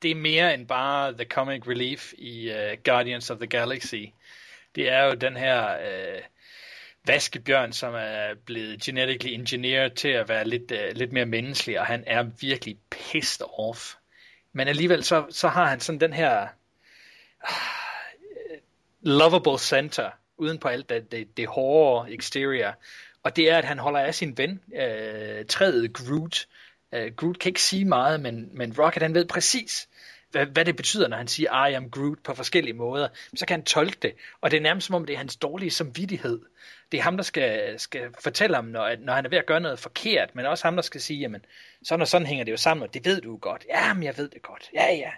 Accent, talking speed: Danish, 200 wpm